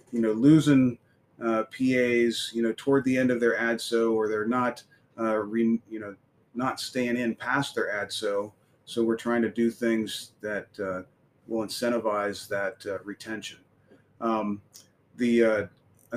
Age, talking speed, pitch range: 30-49, 165 wpm, 115-135 Hz